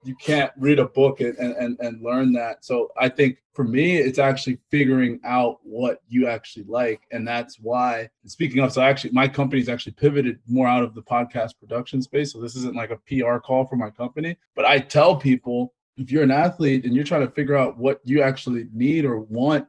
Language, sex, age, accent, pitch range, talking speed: English, male, 20-39, American, 120-140 Hz, 220 wpm